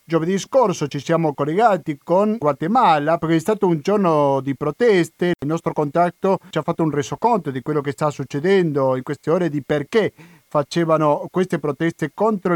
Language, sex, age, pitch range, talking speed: Italian, male, 40-59, 145-190 Hz, 175 wpm